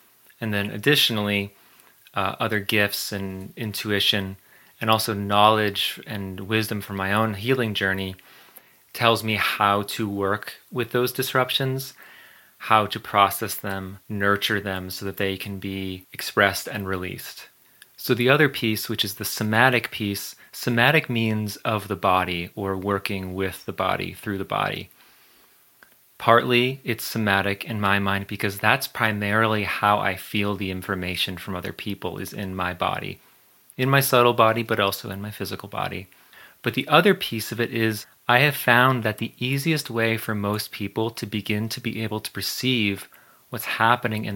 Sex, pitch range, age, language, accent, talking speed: male, 100-115 Hz, 30-49, English, American, 160 wpm